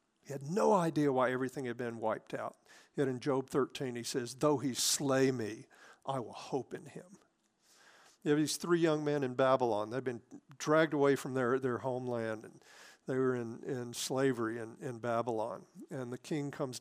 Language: English